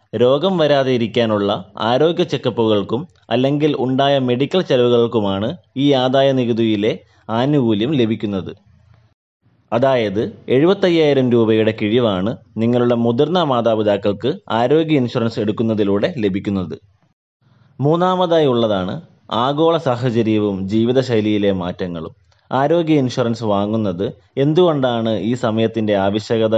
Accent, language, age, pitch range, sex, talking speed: native, Malayalam, 20-39, 105-130 Hz, male, 85 wpm